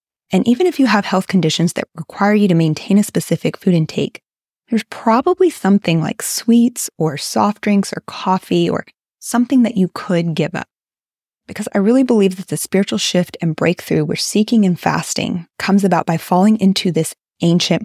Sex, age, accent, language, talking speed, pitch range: female, 20-39, American, English, 180 wpm, 165-210 Hz